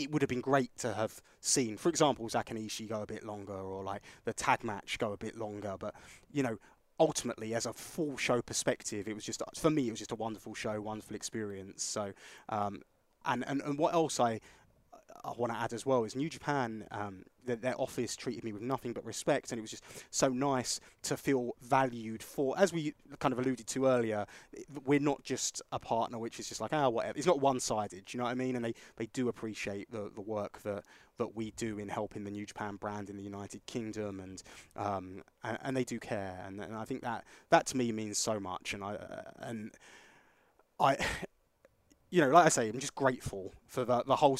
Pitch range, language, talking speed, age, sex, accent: 105-125 Hz, English, 225 wpm, 20-39, male, British